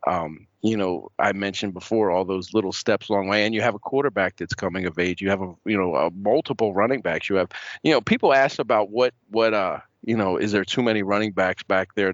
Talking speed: 245 wpm